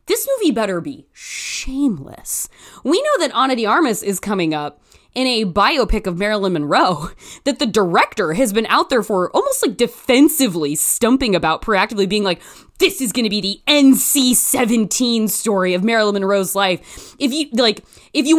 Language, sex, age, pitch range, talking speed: English, female, 20-39, 190-260 Hz, 170 wpm